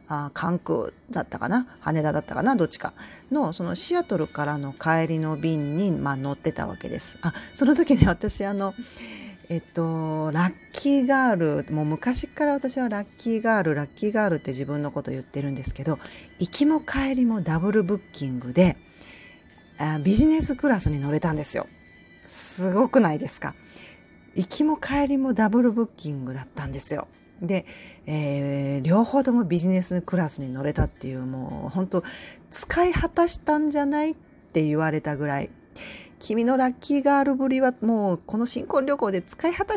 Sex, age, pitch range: female, 30-49, 145-235 Hz